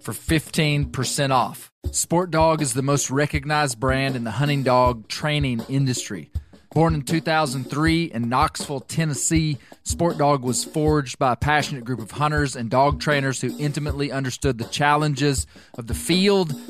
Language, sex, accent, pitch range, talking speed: English, male, American, 125-155 Hz, 155 wpm